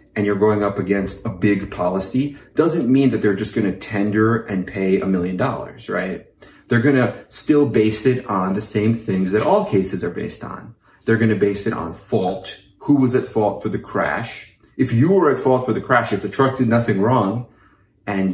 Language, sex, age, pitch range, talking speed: English, male, 30-49, 100-125 Hz, 210 wpm